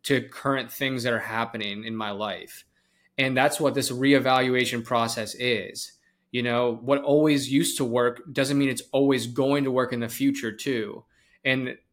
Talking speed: 175 wpm